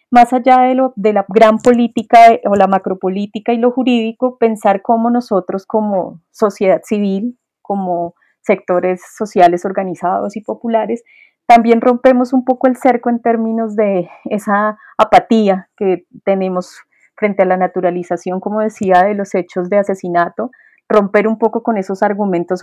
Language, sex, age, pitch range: Spanish, female, 30-49, 180-220 Hz